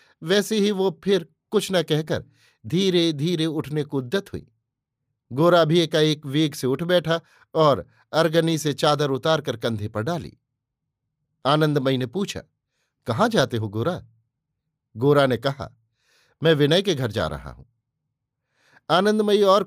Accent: native